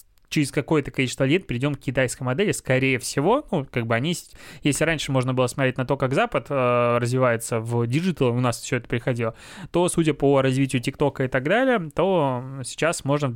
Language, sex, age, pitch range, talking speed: Russian, male, 20-39, 130-155 Hz, 195 wpm